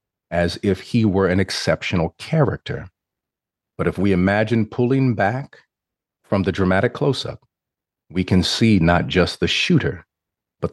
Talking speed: 140 wpm